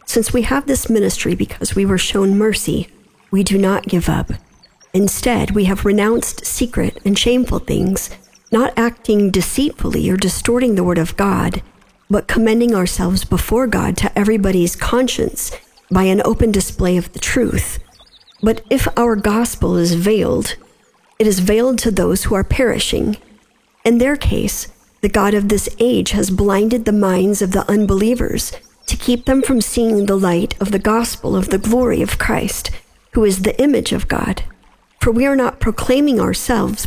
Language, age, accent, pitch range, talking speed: English, 50-69, American, 195-235 Hz, 170 wpm